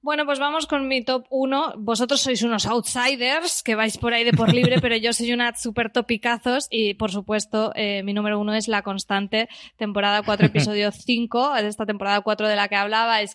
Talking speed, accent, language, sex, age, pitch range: 205 wpm, Spanish, Spanish, female, 20-39, 205-230 Hz